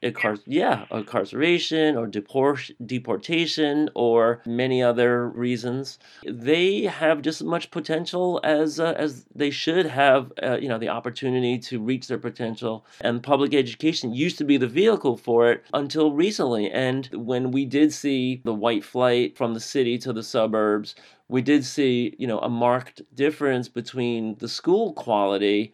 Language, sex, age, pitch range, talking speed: English, male, 40-59, 120-145 Hz, 155 wpm